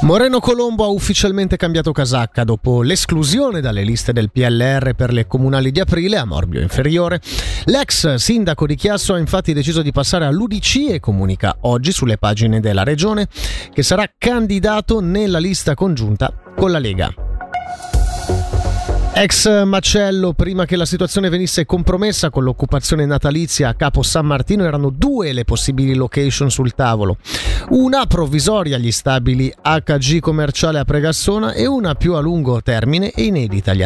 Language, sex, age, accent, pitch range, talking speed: Italian, male, 30-49, native, 125-185 Hz, 150 wpm